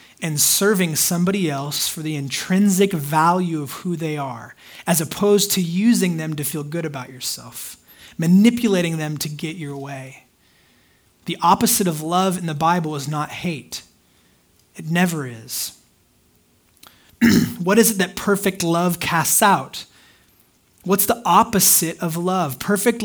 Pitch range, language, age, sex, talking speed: 150-200 Hz, English, 20-39, male, 145 wpm